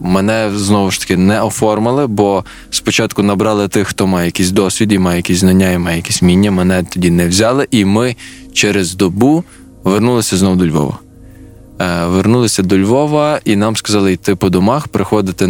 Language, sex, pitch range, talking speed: Ukrainian, male, 95-110 Hz, 165 wpm